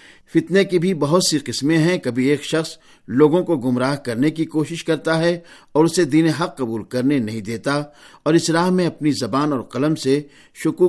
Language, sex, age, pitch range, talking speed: Urdu, male, 50-69, 130-165 Hz, 200 wpm